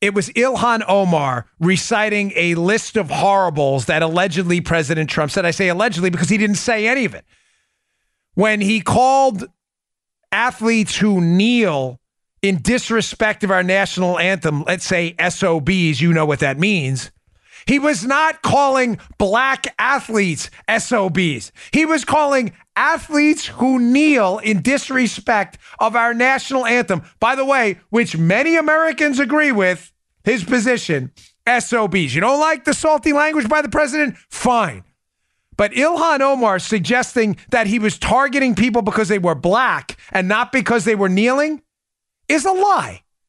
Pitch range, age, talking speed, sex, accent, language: 185-265 Hz, 40-59, 145 wpm, male, American, English